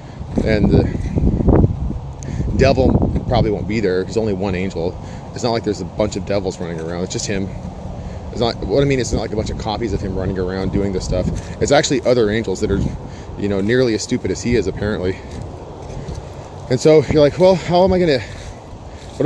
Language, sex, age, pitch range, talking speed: English, male, 30-49, 95-120 Hz, 210 wpm